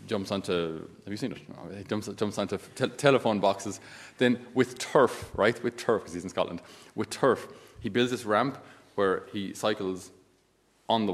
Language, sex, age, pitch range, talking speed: English, male, 30-49, 95-125 Hz, 185 wpm